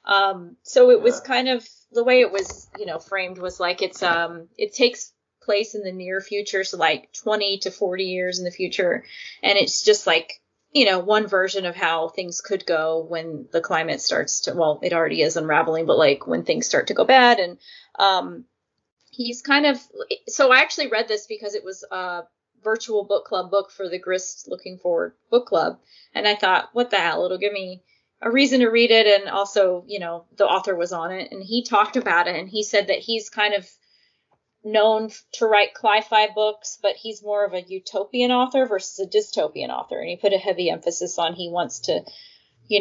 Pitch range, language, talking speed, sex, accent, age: 180-235 Hz, English, 210 wpm, female, American, 20-39